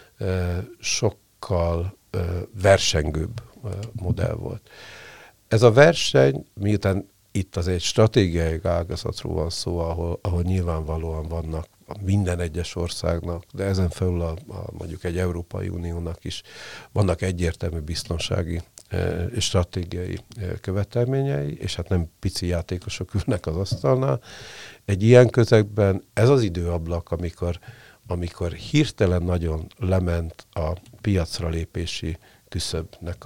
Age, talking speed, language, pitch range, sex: 50-69, 110 wpm, Hungarian, 85-105 Hz, male